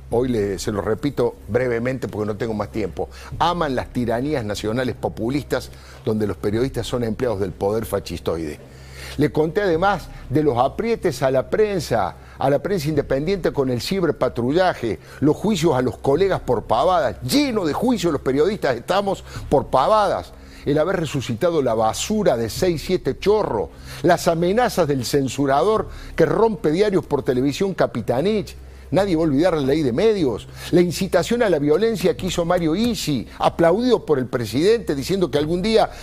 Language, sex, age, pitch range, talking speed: Spanish, male, 50-69, 115-180 Hz, 165 wpm